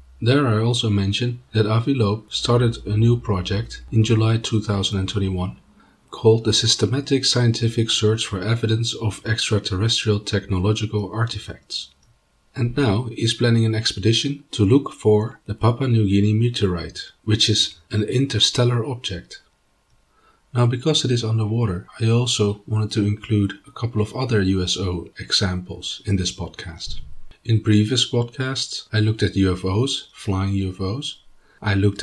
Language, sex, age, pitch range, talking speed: English, male, 40-59, 95-115 Hz, 140 wpm